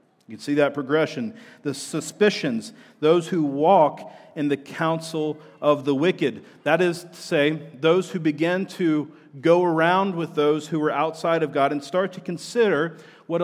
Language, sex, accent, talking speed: English, male, American, 170 wpm